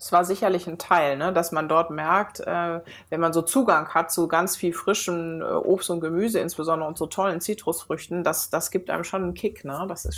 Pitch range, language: 165-210 Hz, German